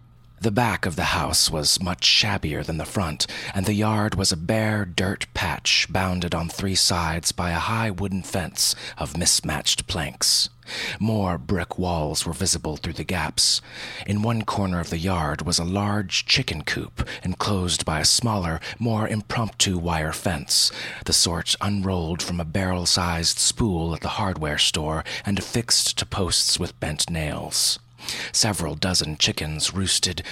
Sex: male